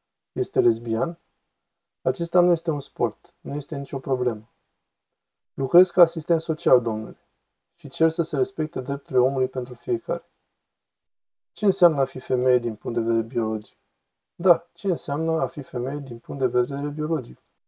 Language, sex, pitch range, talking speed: Romanian, male, 125-155 Hz, 155 wpm